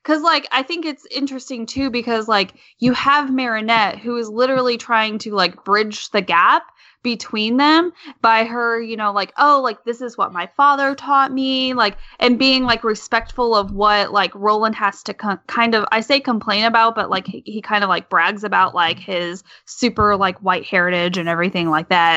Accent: American